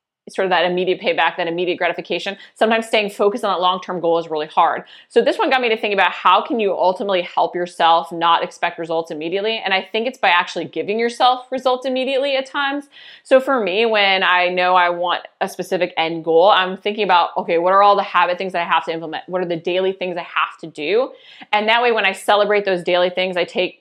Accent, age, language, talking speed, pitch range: American, 20-39, English, 240 wpm, 170-200 Hz